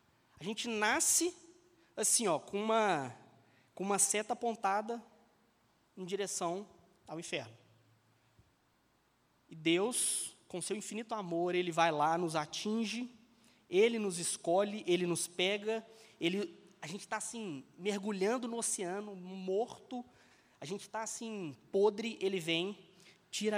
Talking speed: 125 wpm